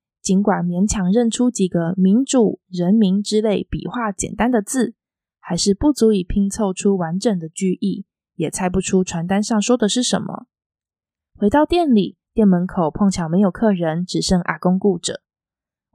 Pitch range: 185-240 Hz